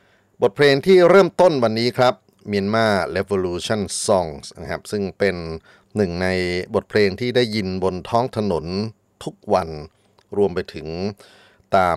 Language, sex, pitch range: Thai, male, 90-105 Hz